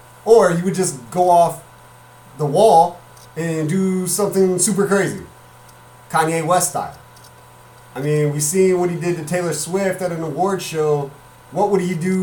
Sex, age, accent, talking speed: male, 30-49, American, 165 wpm